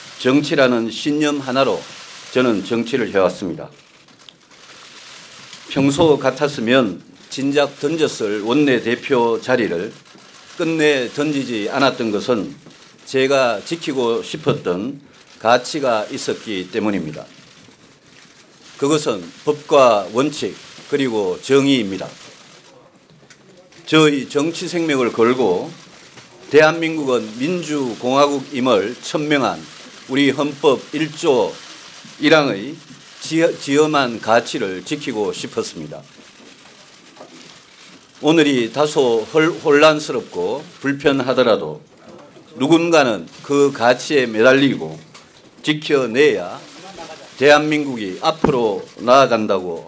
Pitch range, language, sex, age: 130-155 Hz, Korean, male, 40-59